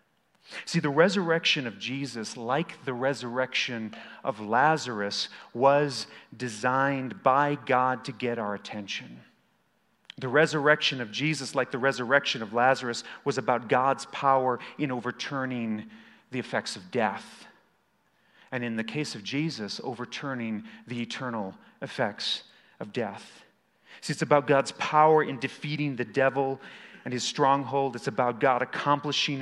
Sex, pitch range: male, 115-145 Hz